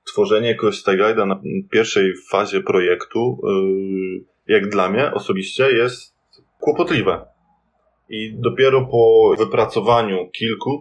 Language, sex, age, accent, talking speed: Polish, male, 20-39, native, 100 wpm